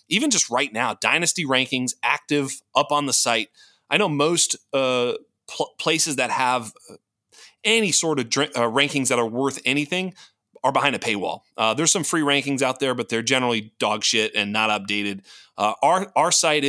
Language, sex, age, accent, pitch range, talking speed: English, male, 30-49, American, 125-145 Hz, 185 wpm